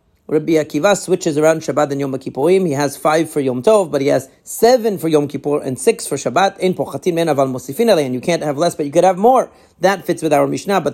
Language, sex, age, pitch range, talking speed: English, male, 40-59, 140-180 Hz, 230 wpm